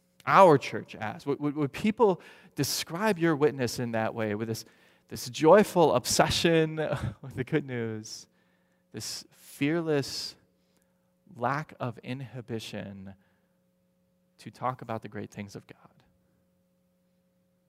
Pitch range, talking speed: 120-180 Hz, 115 wpm